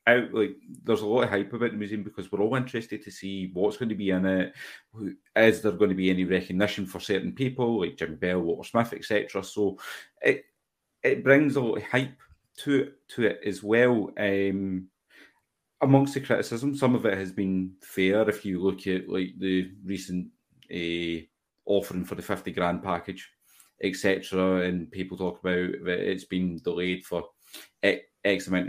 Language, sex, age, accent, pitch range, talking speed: English, male, 30-49, British, 90-105 Hz, 190 wpm